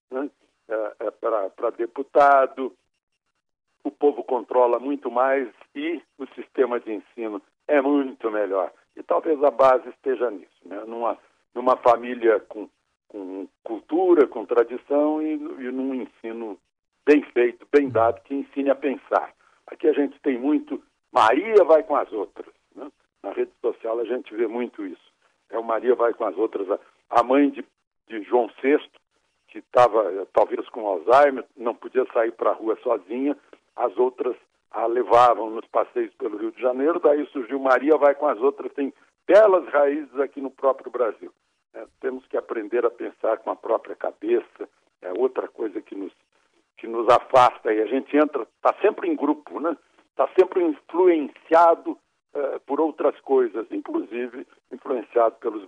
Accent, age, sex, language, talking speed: Brazilian, 60-79, male, Portuguese, 160 wpm